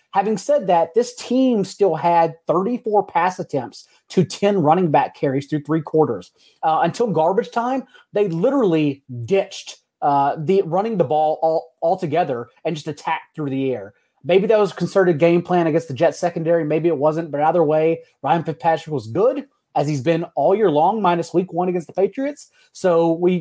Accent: American